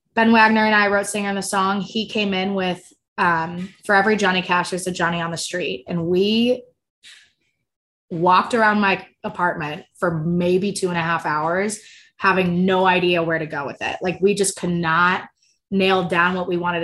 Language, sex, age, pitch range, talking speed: English, female, 20-39, 175-210 Hz, 195 wpm